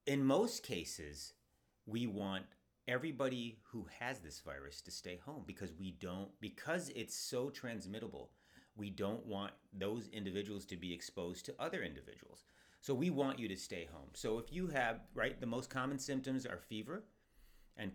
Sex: male